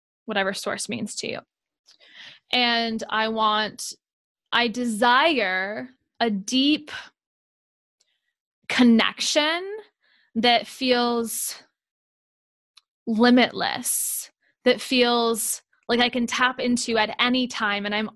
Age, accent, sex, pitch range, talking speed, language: 10-29, American, female, 220-265 Hz, 95 wpm, English